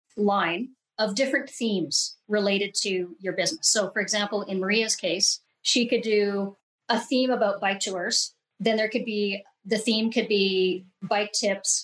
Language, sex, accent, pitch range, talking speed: English, female, American, 195-240 Hz, 160 wpm